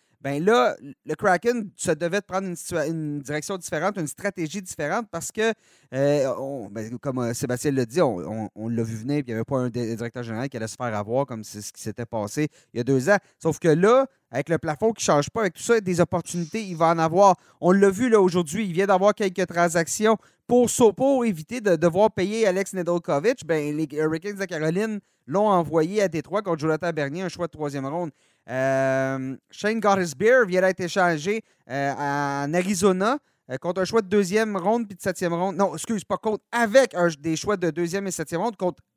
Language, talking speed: French, 220 wpm